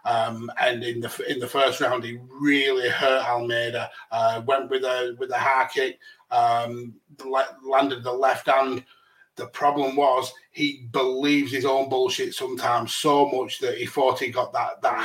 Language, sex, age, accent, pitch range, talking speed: English, male, 30-49, British, 125-155 Hz, 170 wpm